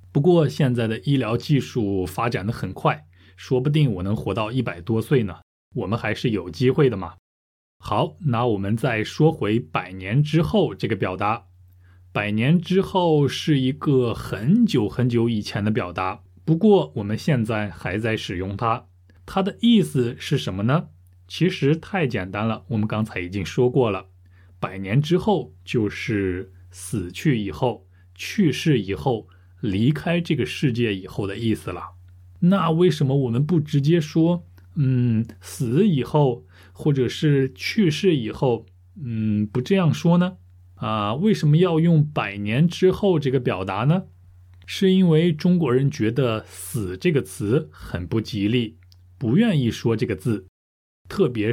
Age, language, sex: 20-39, Chinese, male